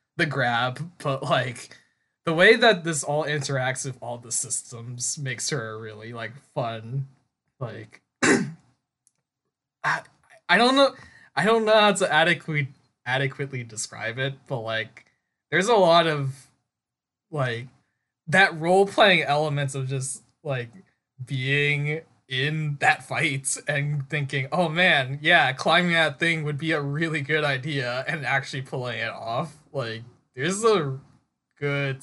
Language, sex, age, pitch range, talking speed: English, male, 20-39, 120-155 Hz, 135 wpm